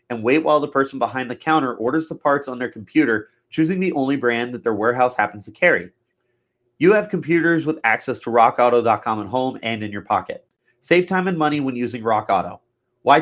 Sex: male